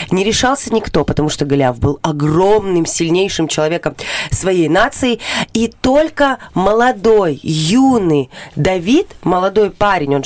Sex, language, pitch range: female, Russian, 165-225 Hz